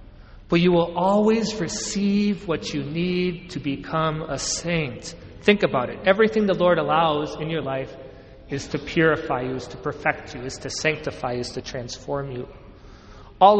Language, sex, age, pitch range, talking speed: English, male, 40-59, 150-210 Hz, 170 wpm